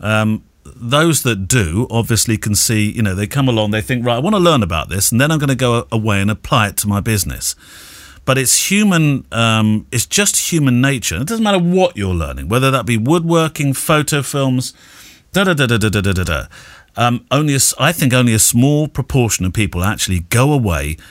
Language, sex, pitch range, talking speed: English, male, 95-135 Hz, 190 wpm